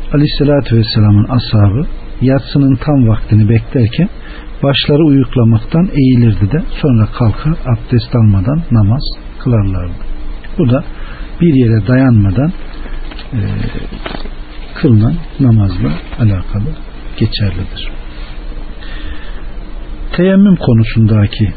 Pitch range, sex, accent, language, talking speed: 95-135 Hz, male, native, Turkish, 80 wpm